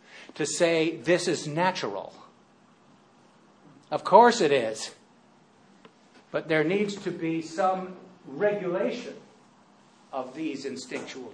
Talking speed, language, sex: 100 wpm, English, male